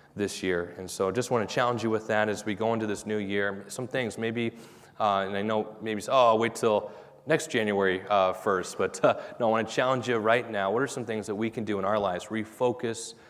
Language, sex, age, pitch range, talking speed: English, male, 30-49, 100-120 Hz, 255 wpm